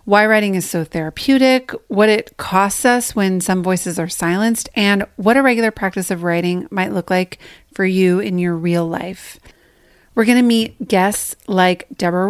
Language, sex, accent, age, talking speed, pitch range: English, female, American, 30-49, 175 wpm, 180-225 Hz